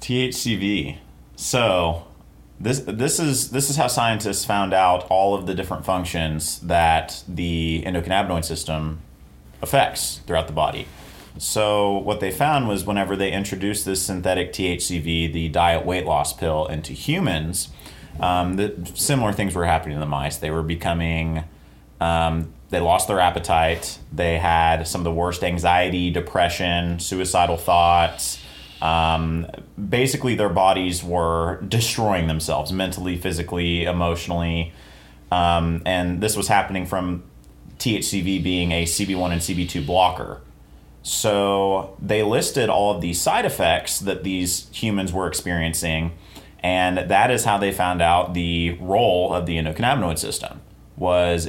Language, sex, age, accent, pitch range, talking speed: English, male, 30-49, American, 80-95 Hz, 140 wpm